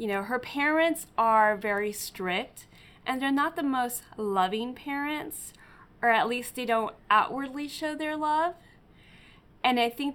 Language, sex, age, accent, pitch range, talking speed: English, female, 20-39, American, 195-245 Hz, 155 wpm